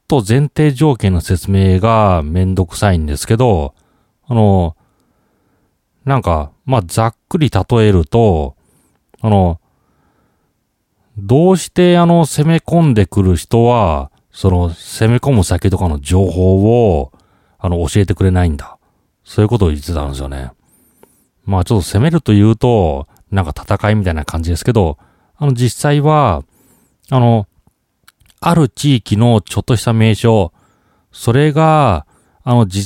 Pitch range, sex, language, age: 90-120 Hz, male, Japanese, 40-59